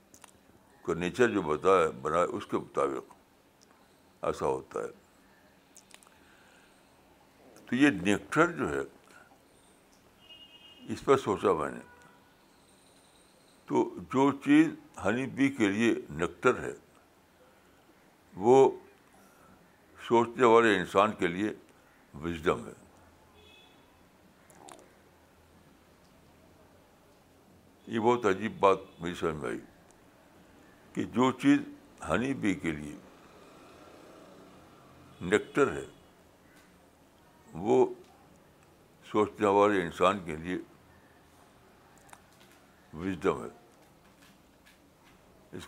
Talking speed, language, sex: 85 wpm, Urdu, male